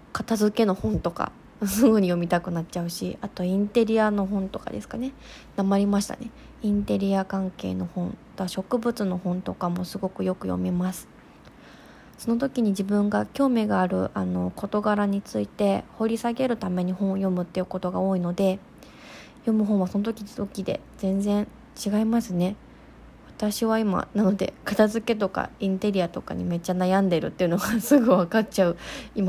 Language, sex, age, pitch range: Japanese, female, 20-39, 180-215 Hz